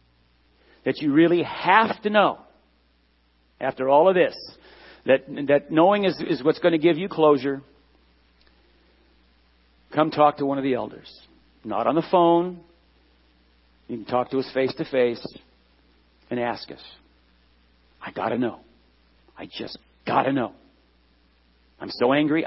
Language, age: English, 50-69